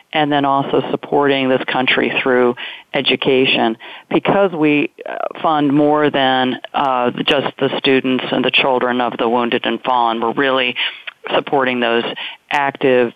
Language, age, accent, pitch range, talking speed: English, 40-59, American, 130-155 Hz, 135 wpm